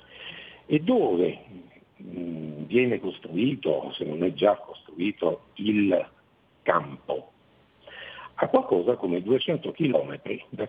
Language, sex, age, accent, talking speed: Italian, male, 60-79, native, 95 wpm